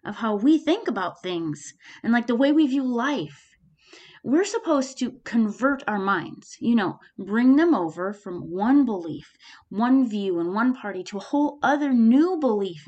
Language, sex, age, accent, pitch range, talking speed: English, female, 30-49, American, 200-270 Hz, 175 wpm